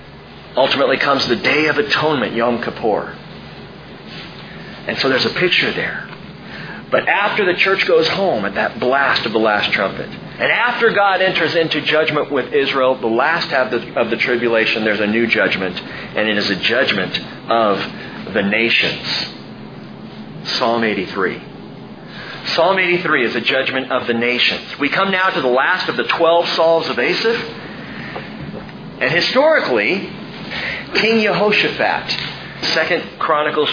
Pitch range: 130-220 Hz